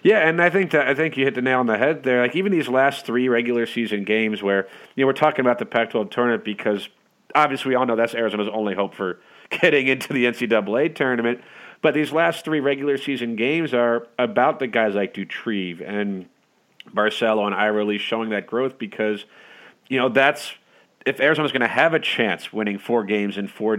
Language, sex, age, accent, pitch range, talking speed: English, male, 40-59, American, 110-135 Hz, 210 wpm